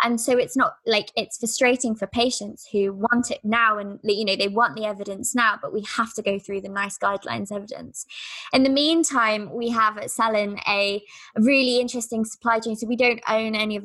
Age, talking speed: 20-39, 210 wpm